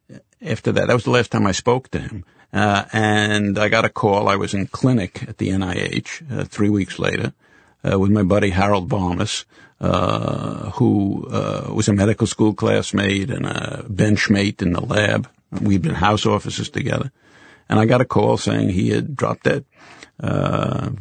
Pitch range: 100-120 Hz